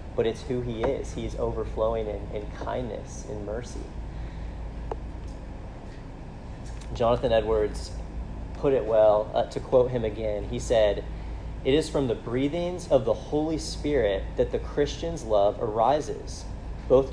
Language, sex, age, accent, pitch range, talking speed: English, male, 30-49, American, 100-130 Hz, 140 wpm